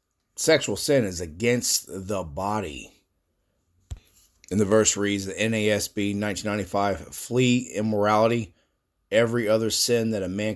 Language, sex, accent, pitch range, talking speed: English, male, American, 85-110 Hz, 120 wpm